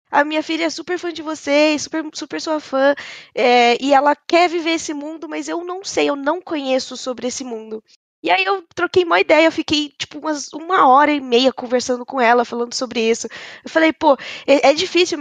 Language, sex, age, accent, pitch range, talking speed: Portuguese, female, 10-29, Brazilian, 250-300 Hz, 210 wpm